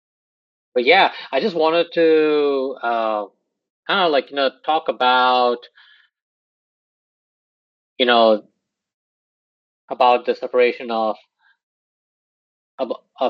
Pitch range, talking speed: 120-160 Hz, 95 wpm